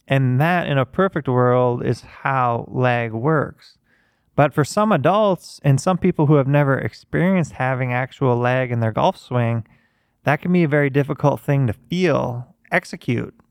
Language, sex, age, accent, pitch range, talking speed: English, male, 20-39, American, 120-150 Hz, 170 wpm